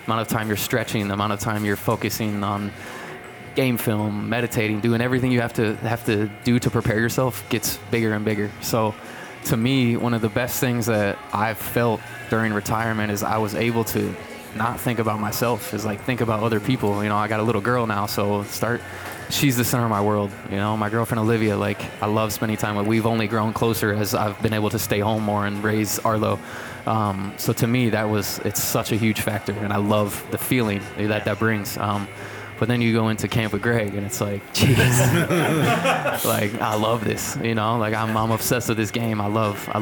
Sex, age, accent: male, 20-39, American